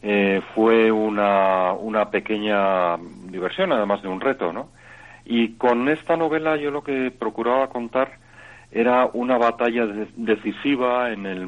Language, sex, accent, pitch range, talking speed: Spanish, male, Spanish, 100-125 Hz, 140 wpm